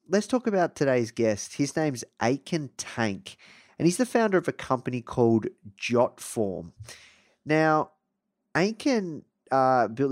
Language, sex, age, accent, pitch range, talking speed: English, male, 20-39, Australian, 110-145 Hz, 130 wpm